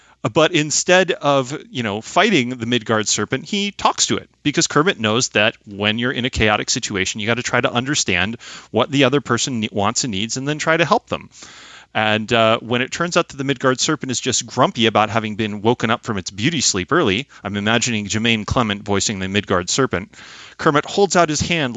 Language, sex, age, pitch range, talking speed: English, male, 30-49, 110-140 Hz, 215 wpm